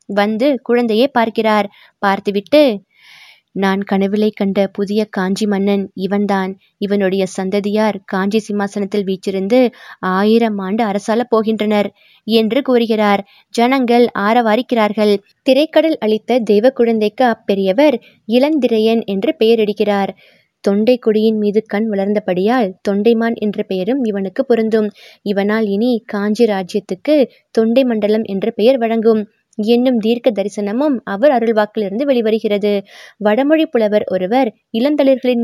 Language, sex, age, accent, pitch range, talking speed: Tamil, female, 20-39, native, 205-245 Hz, 100 wpm